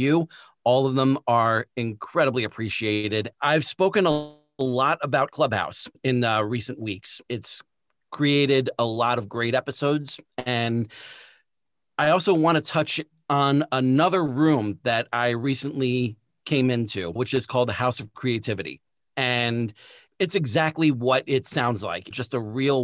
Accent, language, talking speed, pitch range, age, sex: American, English, 145 wpm, 120-145 Hz, 40-59, male